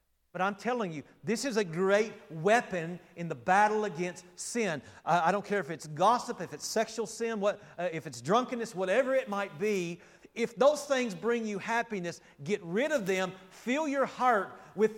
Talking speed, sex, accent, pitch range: 190 wpm, male, American, 175-220 Hz